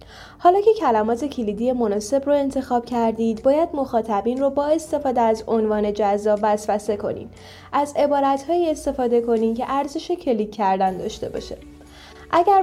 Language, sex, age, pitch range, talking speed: Persian, female, 10-29, 220-290 Hz, 140 wpm